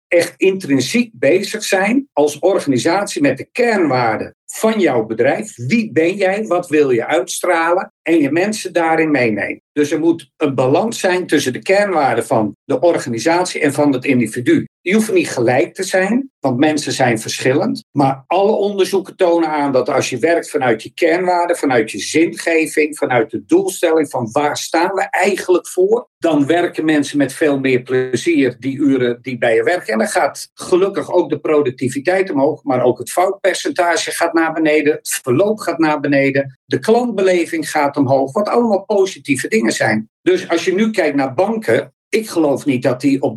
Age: 50-69